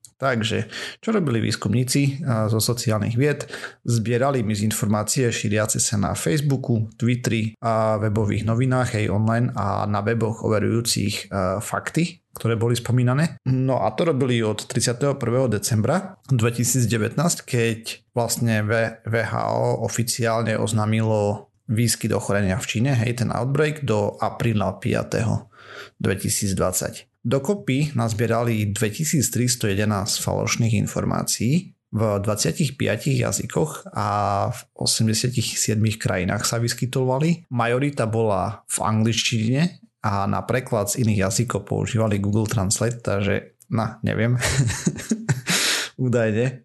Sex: male